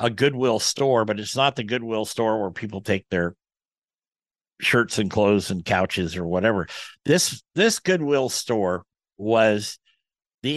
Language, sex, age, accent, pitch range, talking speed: English, male, 50-69, American, 105-145 Hz, 150 wpm